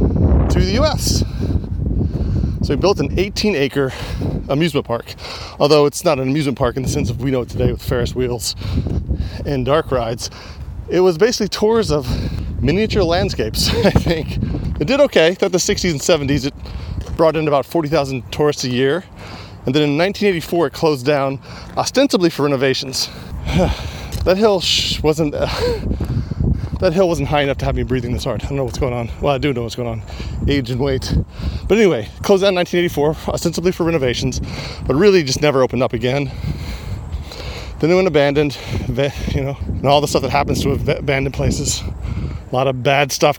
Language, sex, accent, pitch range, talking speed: English, male, American, 115-160 Hz, 180 wpm